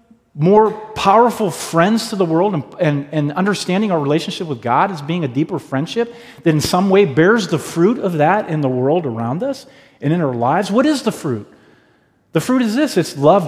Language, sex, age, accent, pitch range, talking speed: English, male, 40-59, American, 135-200 Hz, 210 wpm